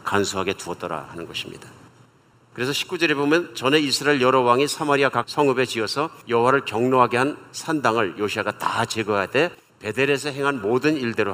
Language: Korean